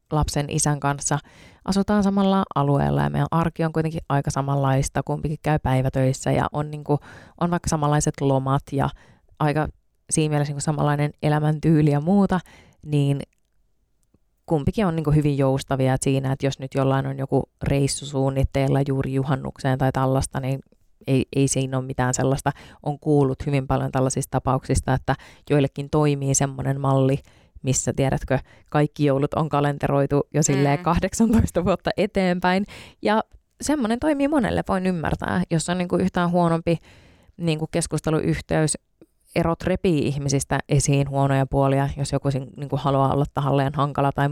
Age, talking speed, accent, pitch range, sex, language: 20-39, 150 wpm, native, 135-155 Hz, female, Finnish